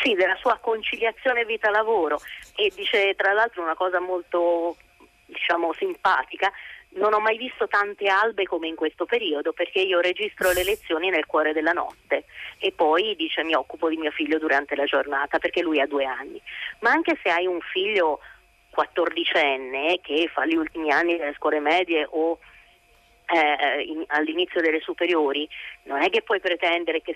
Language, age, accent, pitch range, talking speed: Italian, 30-49, native, 155-215 Hz, 165 wpm